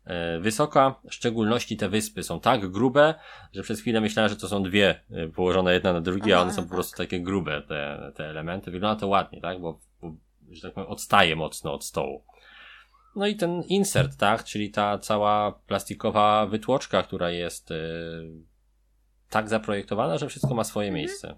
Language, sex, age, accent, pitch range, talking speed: Polish, male, 20-39, native, 90-120 Hz, 175 wpm